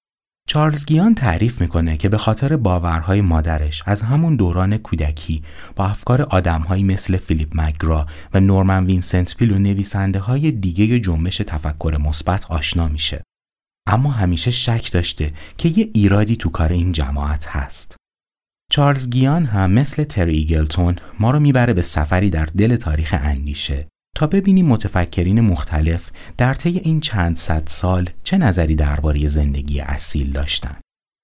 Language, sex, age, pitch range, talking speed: Persian, male, 30-49, 80-110 Hz, 140 wpm